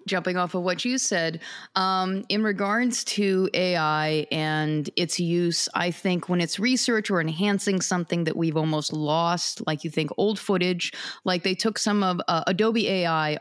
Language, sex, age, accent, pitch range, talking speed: English, female, 30-49, American, 170-215 Hz, 175 wpm